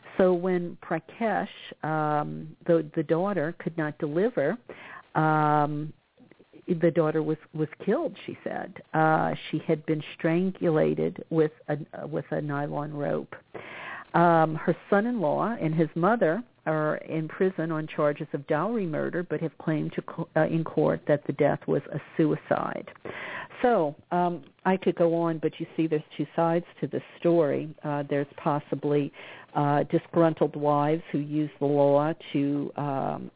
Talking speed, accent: 150 wpm, American